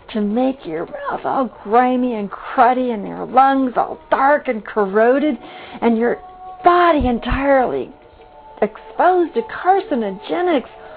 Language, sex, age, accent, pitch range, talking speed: English, female, 50-69, American, 255-385 Hz, 120 wpm